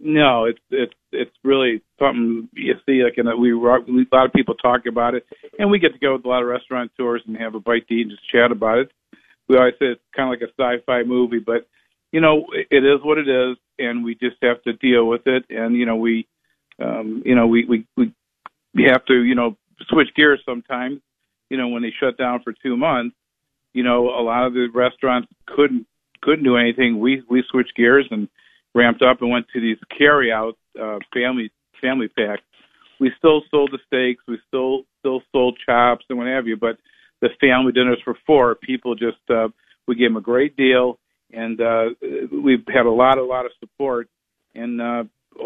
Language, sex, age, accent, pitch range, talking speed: English, male, 50-69, American, 115-130 Hz, 215 wpm